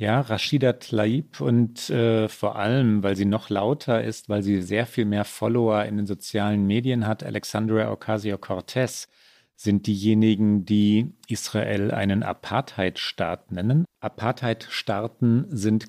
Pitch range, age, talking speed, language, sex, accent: 100-120 Hz, 50-69, 130 wpm, German, male, German